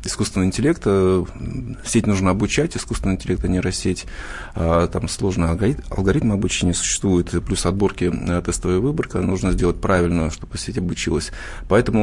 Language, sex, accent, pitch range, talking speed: Russian, male, native, 90-110 Hz, 130 wpm